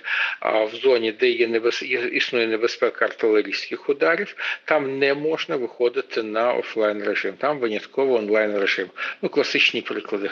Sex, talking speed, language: male, 140 wpm, Ukrainian